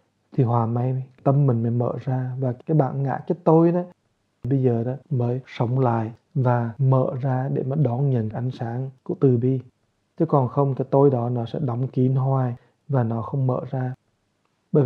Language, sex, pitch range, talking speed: English, male, 125-140 Hz, 200 wpm